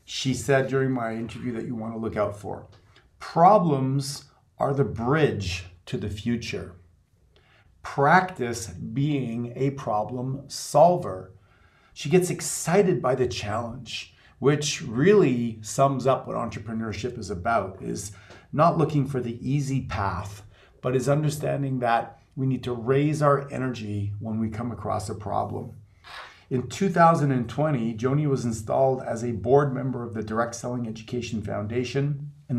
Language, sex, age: English, male, 40-59